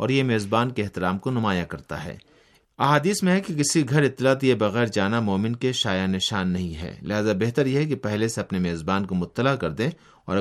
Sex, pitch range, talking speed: male, 95-125 Hz, 220 wpm